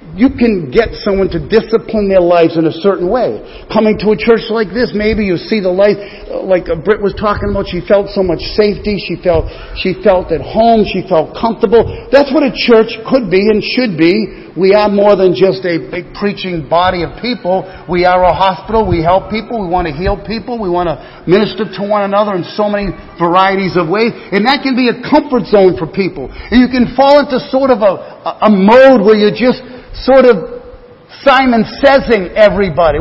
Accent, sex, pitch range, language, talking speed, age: American, male, 185-245 Hz, English, 205 wpm, 50-69